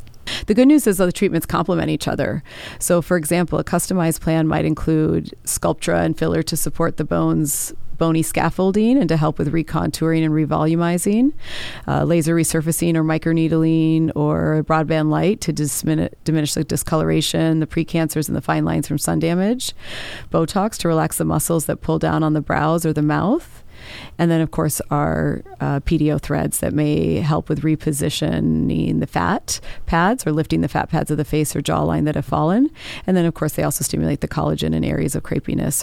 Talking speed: 185 wpm